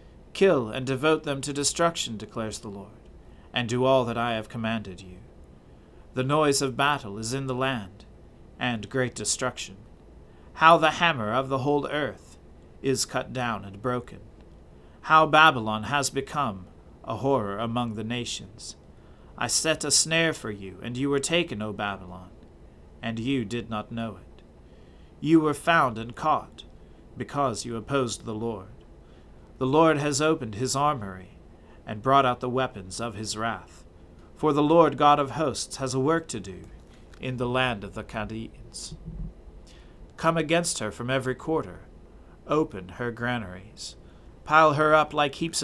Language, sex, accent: English, male, American